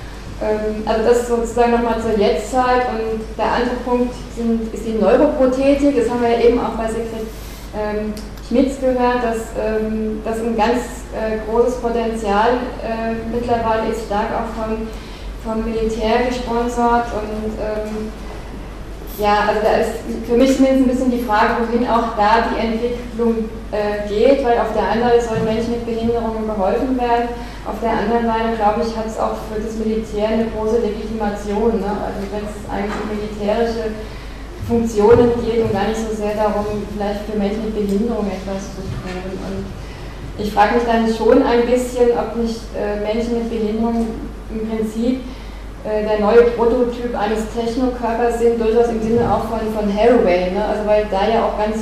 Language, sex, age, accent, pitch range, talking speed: German, female, 10-29, German, 215-235 Hz, 170 wpm